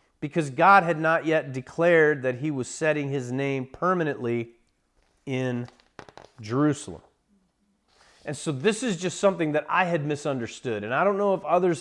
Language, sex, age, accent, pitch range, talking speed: English, male, 40-59, American, 120-165 Hz, 160 wpm